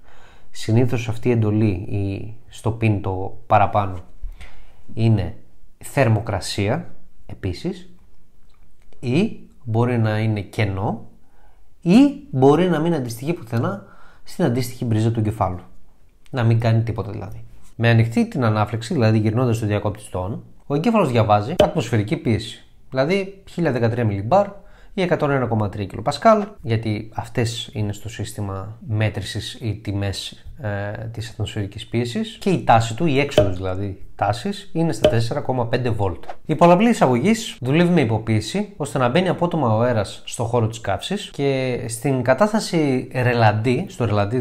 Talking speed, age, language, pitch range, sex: 135 wpm, 20-39, Greek, 105-155 Hz, male